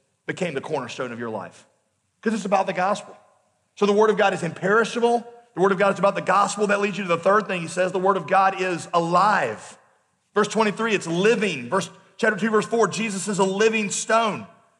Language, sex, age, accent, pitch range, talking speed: English, male, 40-59, American, 180-230 Hz, 225 wpm